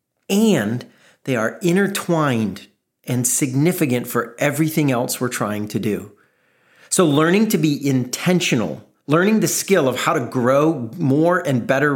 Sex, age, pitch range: male, 40-59, 125-160 Hz